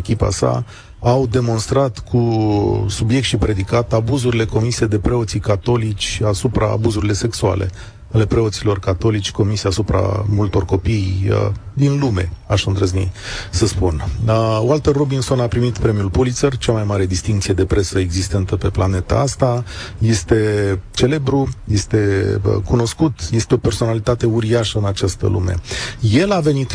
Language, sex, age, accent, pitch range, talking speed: Romanian, male, 40-59, native, 100-120 Hz, 140 wpm